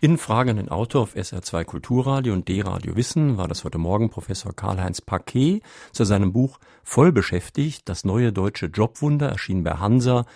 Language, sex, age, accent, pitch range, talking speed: German, male, 50-69, German, 95-125 Hz, 155 wpm